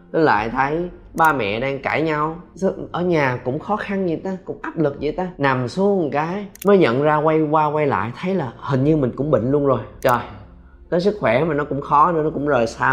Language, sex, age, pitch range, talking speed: Vietnamese, male, 20-39, 115-155 Hz, 240 wpm